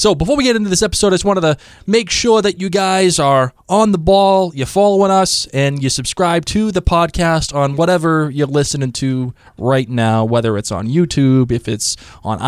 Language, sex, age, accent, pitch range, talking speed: English, male, 20-39, American, 125-175 Hz, 205 wpm